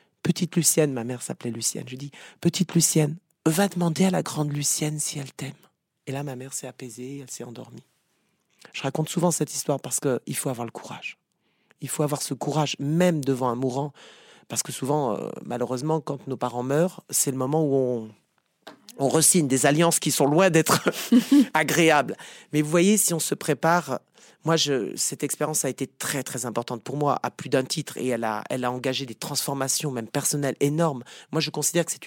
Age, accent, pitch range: 40-59, French, 135-165 Hz